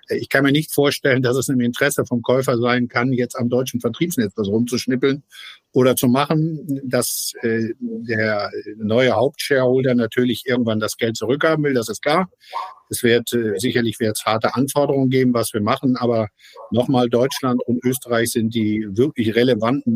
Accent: German